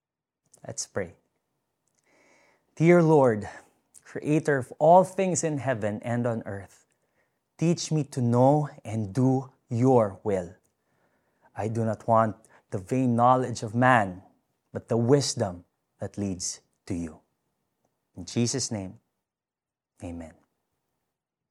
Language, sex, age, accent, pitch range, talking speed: Filipino, male, 20-39, native, 105-145 Hz, 115 wpm